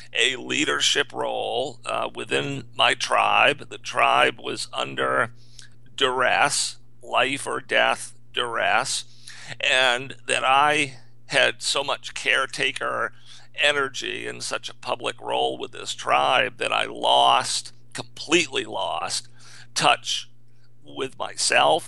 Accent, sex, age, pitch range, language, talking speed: American, male, 50-69, 120-130 Hz, English, 110 wpm